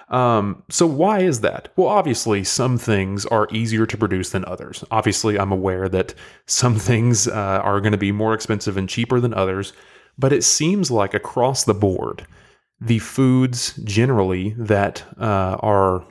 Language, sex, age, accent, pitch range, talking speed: English, male, 30-49, American, 100-115 Hz, 170 wpm